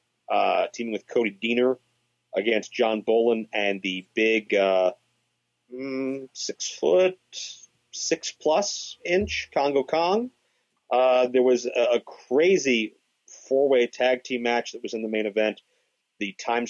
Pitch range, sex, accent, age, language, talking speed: 105-125 Hz, male, American, 40-59, English, 135 wpm